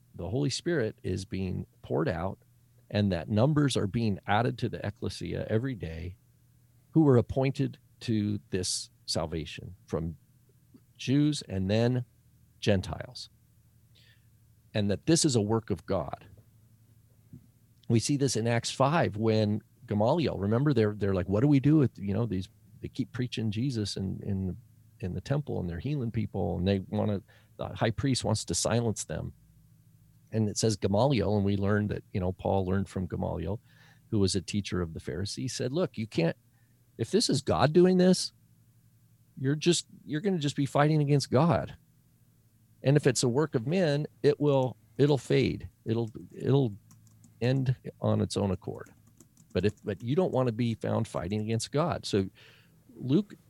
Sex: male